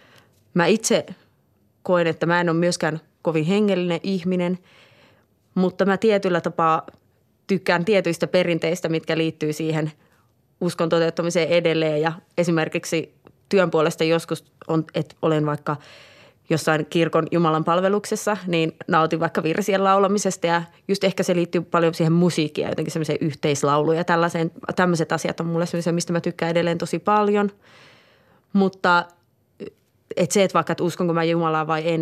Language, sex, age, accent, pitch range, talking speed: Finnish, female, 20-39, native, 160-185 Hz, 150 wpm